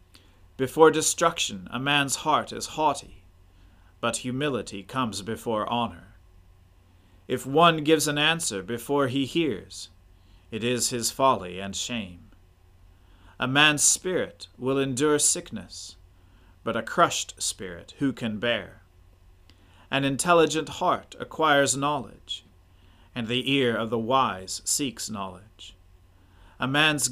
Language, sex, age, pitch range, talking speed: English, male, 40-59, 90-135 Hz, 120 wpm